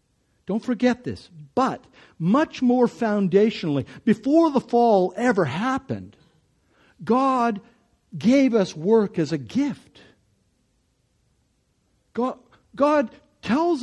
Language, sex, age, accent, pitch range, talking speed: English, male, 60-79, American, 170-245 Hz, 95 wpm